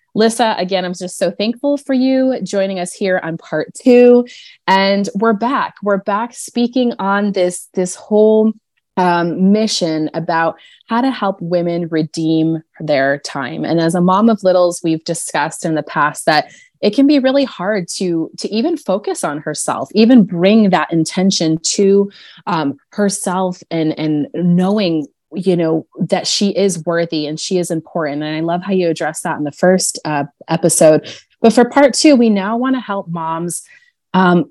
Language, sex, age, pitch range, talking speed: English, female, 20-39, 165-215 Hz, 175 wpm